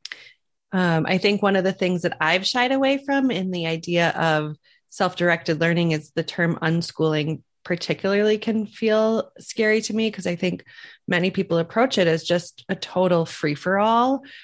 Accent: American